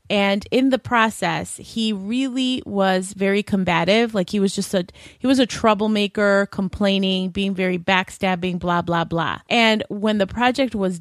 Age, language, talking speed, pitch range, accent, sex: 30-49, English, 165 wpm, 185-225 Hz, American, female